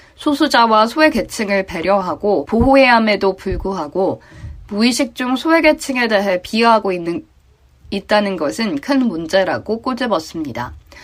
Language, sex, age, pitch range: Korean, female, 20-39, 190-250 Hz